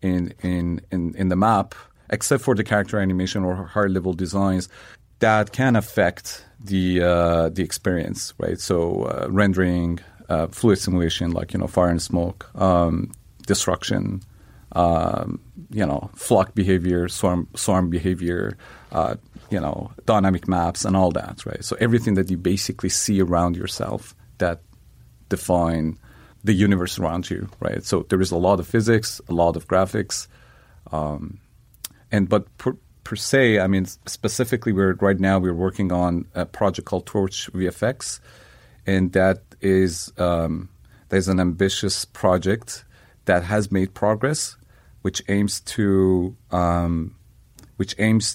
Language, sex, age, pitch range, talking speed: English, male, 40-59, 90-105 Hz, 150 wpm